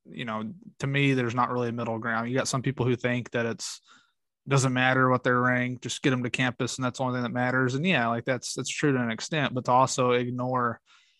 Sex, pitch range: male, 120-140 Hz